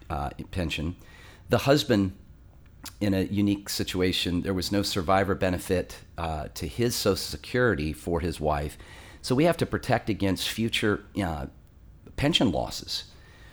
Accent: American